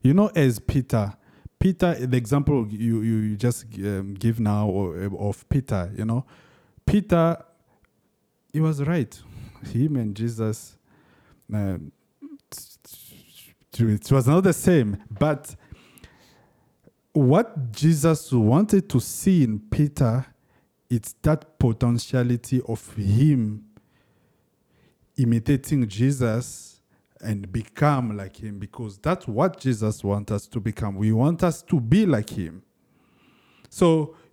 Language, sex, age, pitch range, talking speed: English, male, 50-69, 110-155 Hz, 110 wpm